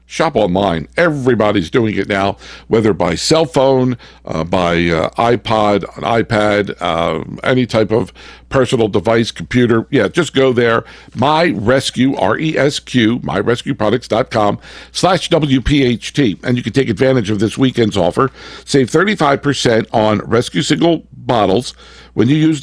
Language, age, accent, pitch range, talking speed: English, 60-79, American, 105-135 Hz, 140 wpm